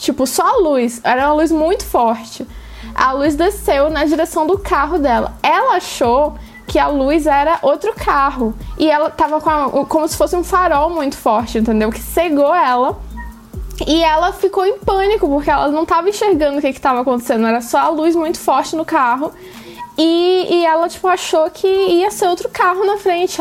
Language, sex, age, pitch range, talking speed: Portuguese, female, 10-29, 300-360 Hz, 195 wpm